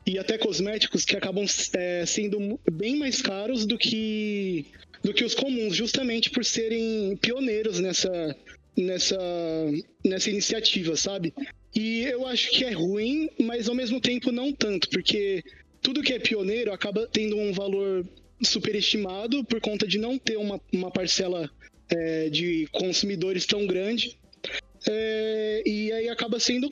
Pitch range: 180-225 Hz